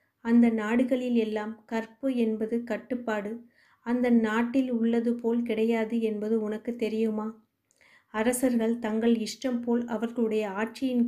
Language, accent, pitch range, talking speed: Tamil, native, 220-250 Hz, 110 wpm